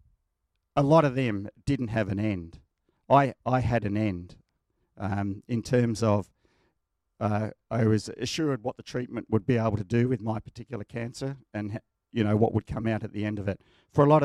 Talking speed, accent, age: 200 wpm, Australian, 50-69